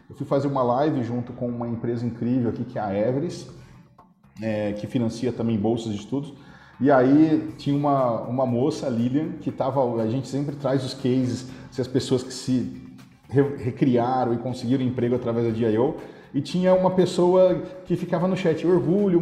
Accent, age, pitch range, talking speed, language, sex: Brazilian, 40-59, 130-180 Hz, 185 wpm, Portuguese, male